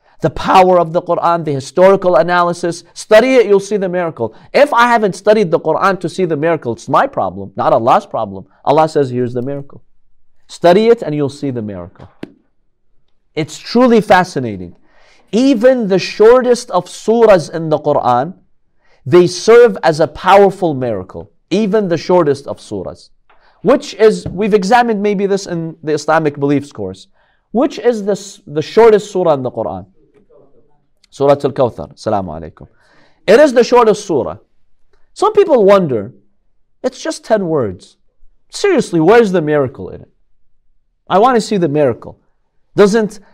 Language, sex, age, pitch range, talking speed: English, male, 50-69, 150-215 Hz, 155 wpm